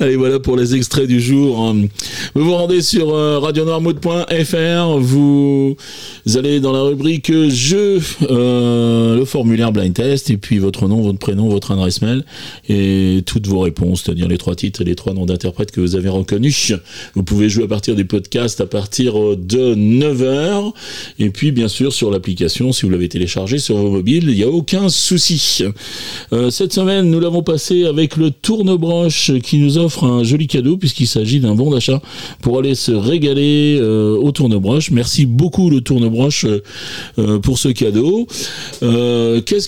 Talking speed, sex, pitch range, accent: 180 wpm, male, 105-150 Hz, French